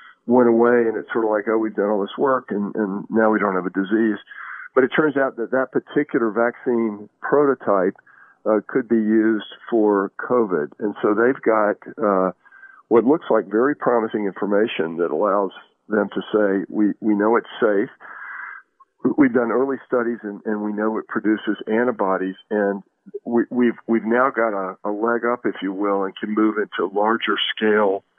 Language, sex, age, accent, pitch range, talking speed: English, male, 50-69, American, 100-120 Hz, 185 wpm